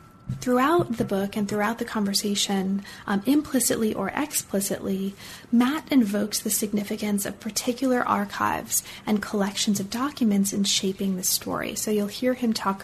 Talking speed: 145 wpm